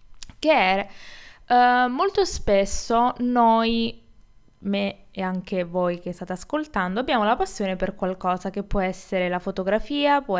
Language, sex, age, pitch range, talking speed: Italian, female, 20-39, 185-255 Hz, 120 wpm